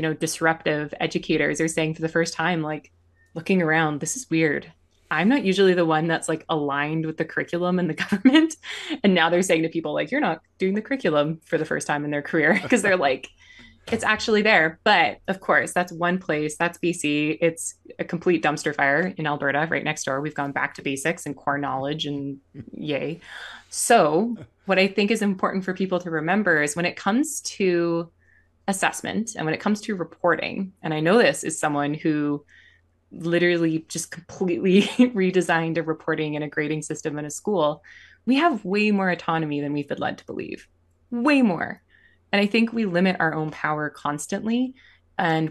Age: 20-39